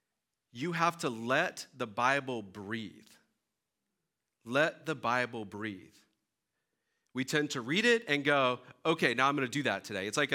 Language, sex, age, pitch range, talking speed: English, male, 40-59, 110-145 Hz, 160 wpm